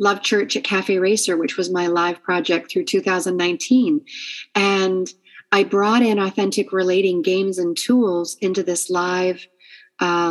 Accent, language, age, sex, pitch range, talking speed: American, English, 40-59, female, 190-245 Hz, 145 wpm